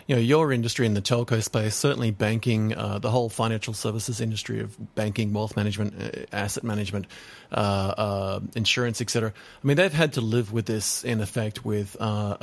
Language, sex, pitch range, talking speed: English, male, 110-130 Hz, 190 wpm